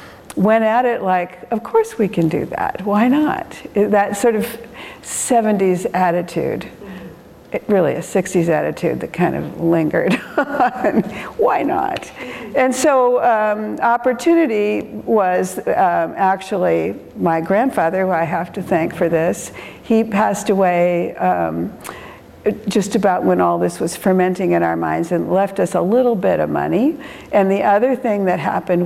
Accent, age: American, 60-79